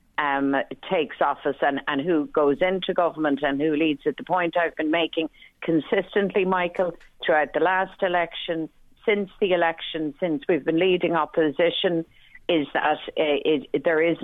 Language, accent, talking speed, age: English, Irish, 165 wpm, 50-69